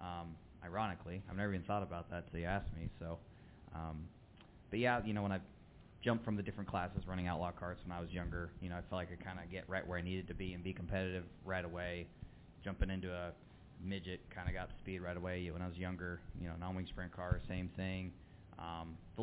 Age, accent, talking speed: 20-39, American, 235 wpm